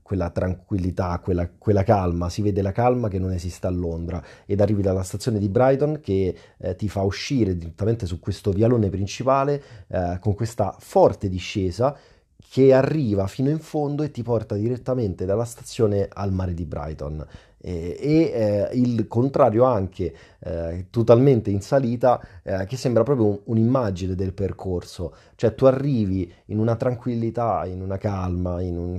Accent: native